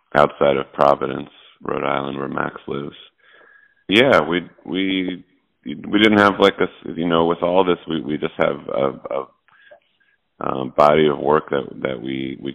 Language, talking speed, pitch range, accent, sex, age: English, 165 wpm, 70-80 Hz, American, male, 30-49